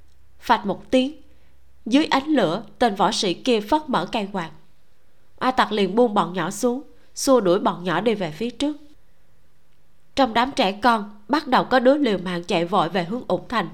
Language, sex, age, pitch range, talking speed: Vietnamese, female, 20-39, 200-265 Hz, 195 wpm